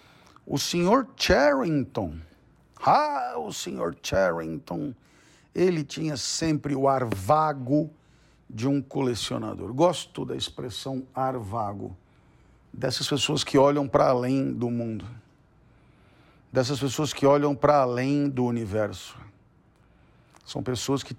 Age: 50-69